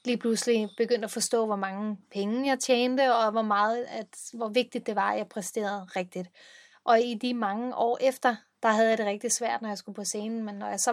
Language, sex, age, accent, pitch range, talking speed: Danish, female, 20-39, native, 210-250 Hz, 235 wpm